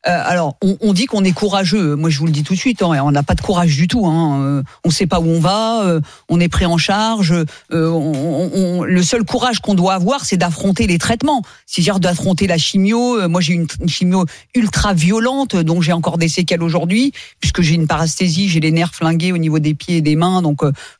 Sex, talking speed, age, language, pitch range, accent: female, 250 wpm, 40-59, French, 170-240 Hz, French